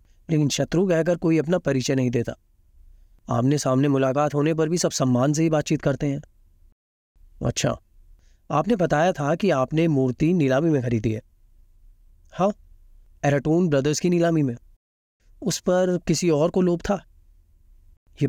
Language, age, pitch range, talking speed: Hindi, 30-49, 90-155 Hz, 145 wpm